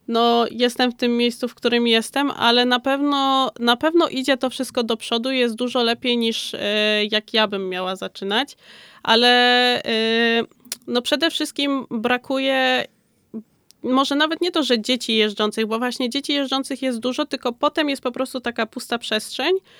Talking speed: 165 wpm